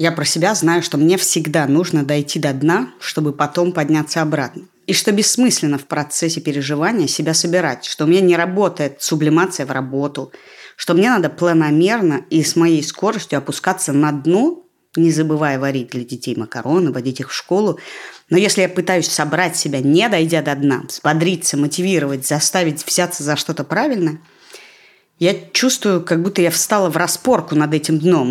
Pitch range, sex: 150-185 Hz, female